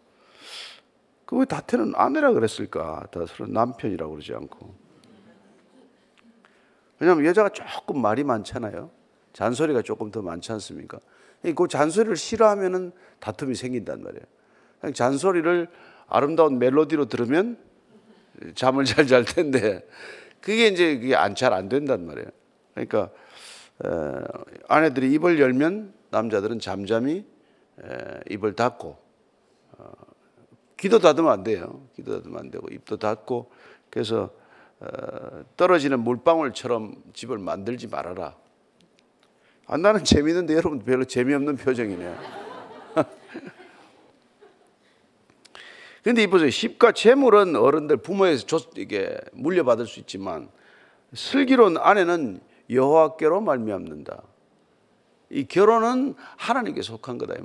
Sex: male